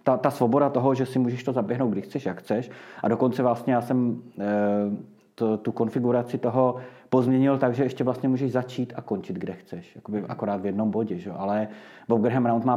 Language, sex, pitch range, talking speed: Czech, male, 110-130 Hz, 205 wpm